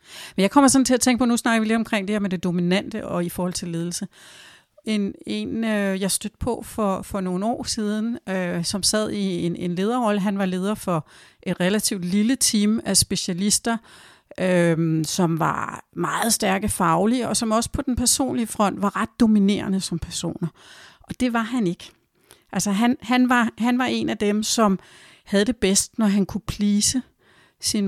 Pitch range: 180-230 Hz